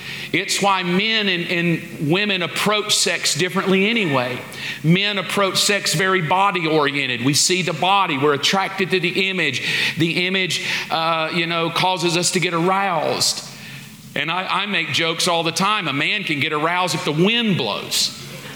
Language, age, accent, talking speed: English, 40-59, American, 170 wpm